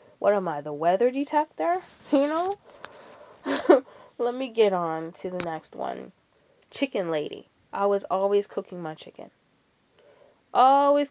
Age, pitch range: 20-39, 170-240 Hz